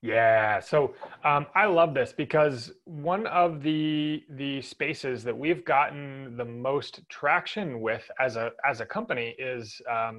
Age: 30-49